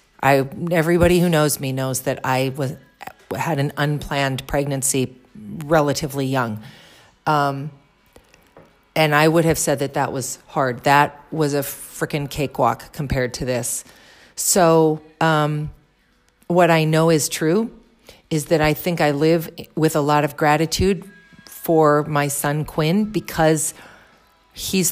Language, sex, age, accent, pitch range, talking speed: English, female, 40-59, American, 135-160 Hz, 135 wpm